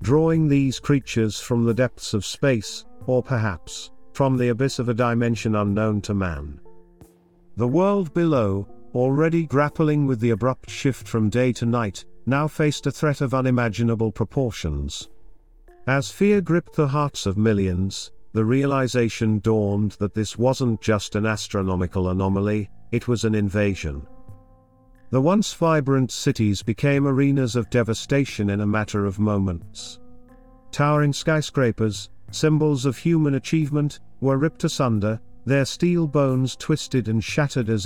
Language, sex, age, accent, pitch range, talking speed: English, male, 50-69, British, 105-140 Hz, 140 wpm